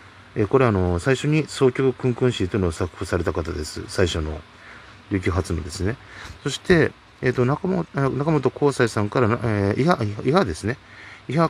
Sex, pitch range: male, 95-130 Hz